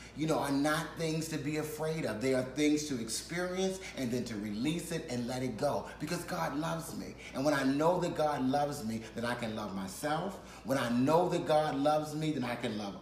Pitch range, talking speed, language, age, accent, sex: 115-145 Hz, 235 wpm, English, 30-49, American, male